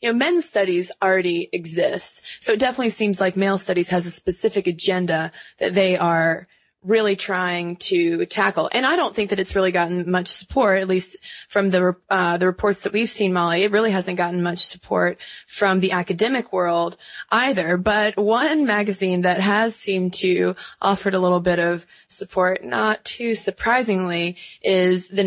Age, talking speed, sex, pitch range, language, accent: 20-39, 175 wpm, female, 175-200 Hz, English, American